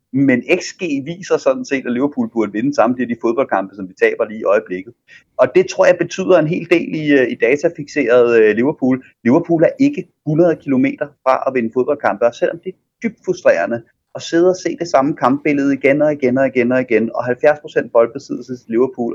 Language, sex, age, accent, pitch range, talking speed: Danish, male, 30-49, native, 125-185 Hz, 205 wpm